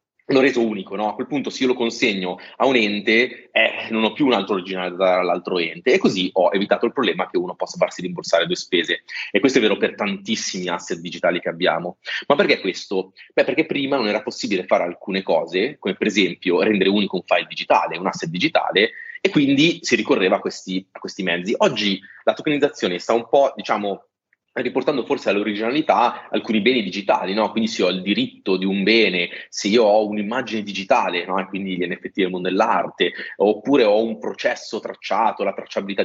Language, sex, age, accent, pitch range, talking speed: Italian, male, 30-49, native, 95-130 Hz, 200 wpm